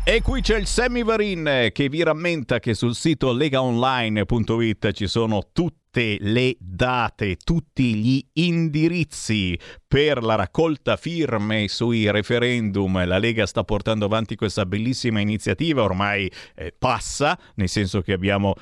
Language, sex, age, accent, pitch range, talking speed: Italian, male, 50-69, native, 105-150 Hz, 130 wpm